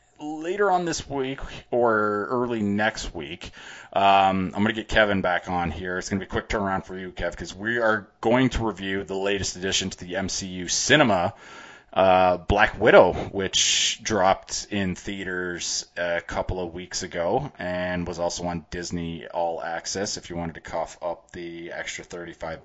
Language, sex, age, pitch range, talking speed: English, male, 30-49, 85-105 Hz, 180 wpm